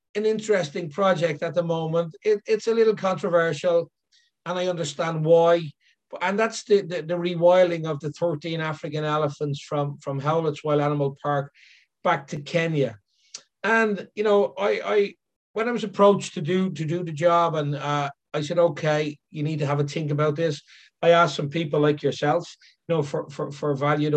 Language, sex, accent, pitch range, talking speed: English, male, Irish, 150-190 Hz, 180 wpm